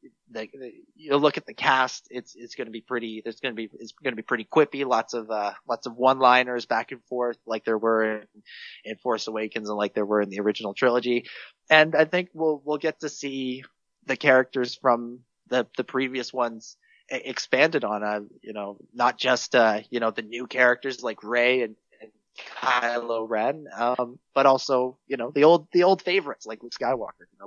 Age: 20-39